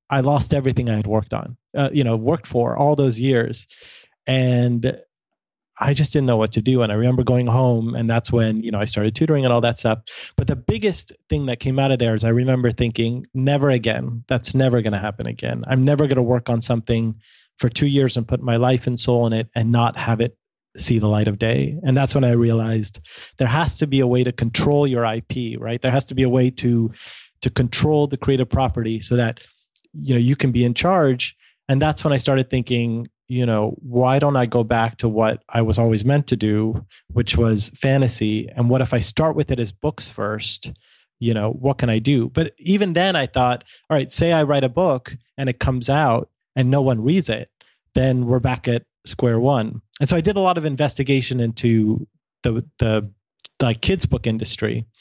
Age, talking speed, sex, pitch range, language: 30-49, 225 wpm, male, 115-135 Hz, English